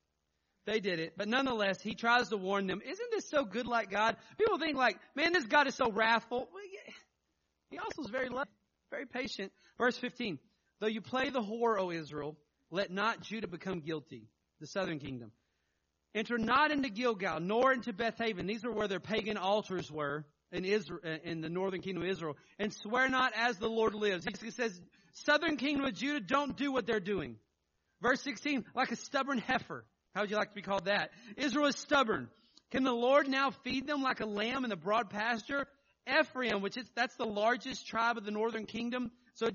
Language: English